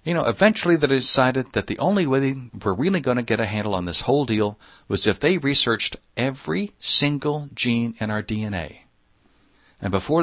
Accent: American